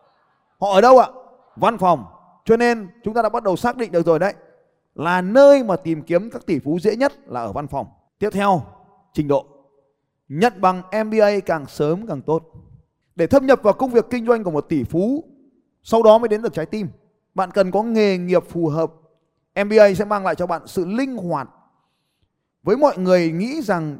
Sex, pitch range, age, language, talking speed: male, 155-215 Hz, 20-39, Vietnamese, 210 wpm